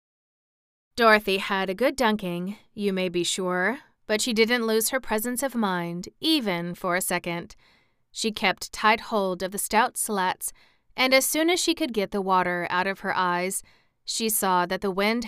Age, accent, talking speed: 30-49, American, 185 wpm